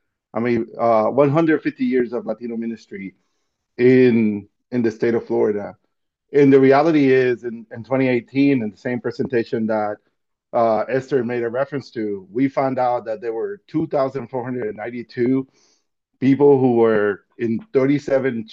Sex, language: male, English